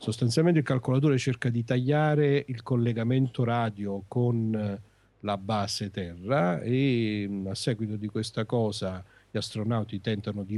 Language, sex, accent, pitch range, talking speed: Italian, male, native, 100-130 Hz, 130 wpm